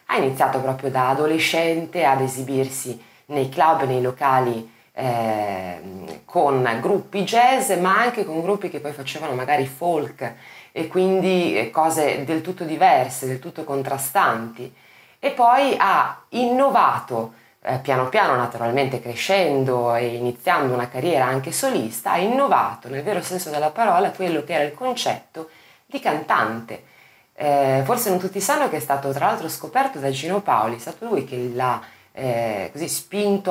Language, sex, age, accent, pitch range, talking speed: Italian, female, 20-39, native, 130-185 Hz, 150 wpm